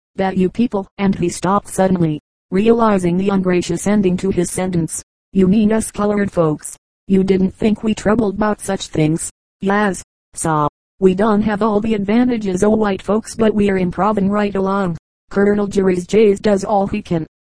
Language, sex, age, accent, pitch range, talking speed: English, female, 30-49, American, 185-210 Hz, 180 wpm